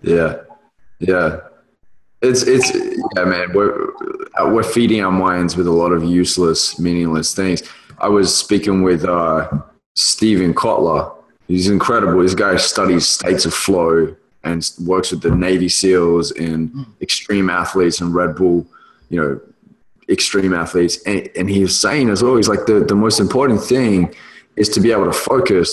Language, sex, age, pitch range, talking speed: English, male, 20-39, 90-115 Hz, 155 wpm